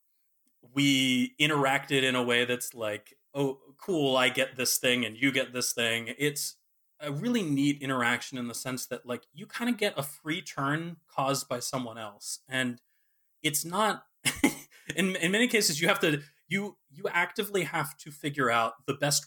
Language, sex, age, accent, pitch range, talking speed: English, male, 30-49, American, 125-170 Hz, 180 wpm